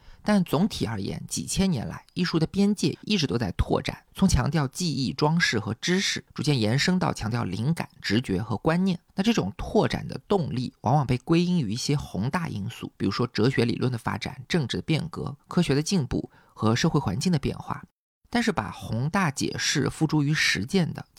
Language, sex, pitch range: Chinese, male, 120-175 Hz